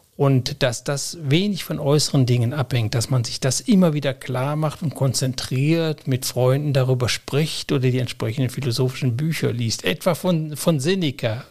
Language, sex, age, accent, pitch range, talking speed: German, male, 60-79, German, 125-150 Hz, 165 wpm